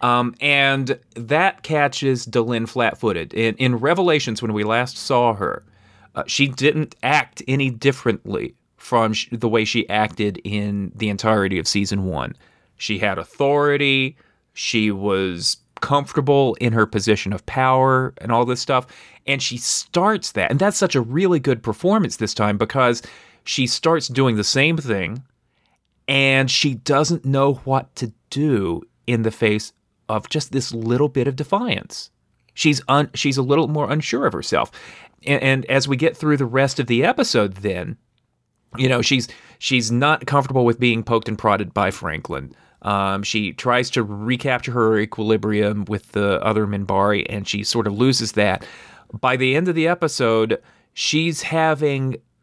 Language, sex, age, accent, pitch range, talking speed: English, male, 30-49, American, 110-140 Hz, 165 wpm